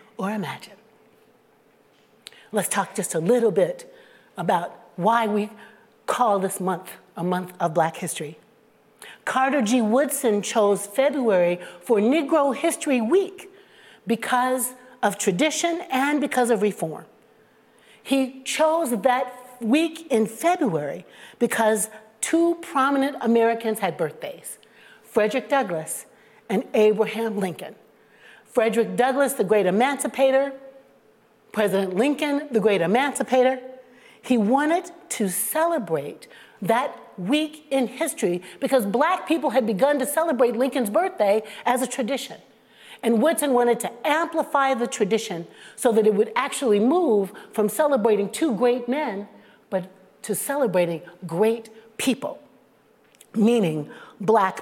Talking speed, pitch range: 120 wpm, 210-275 Hz